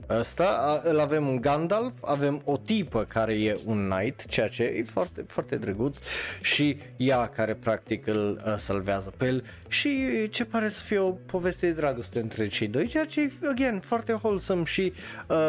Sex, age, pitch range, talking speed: male, 20-39, 105-155 Hz, 185 wpm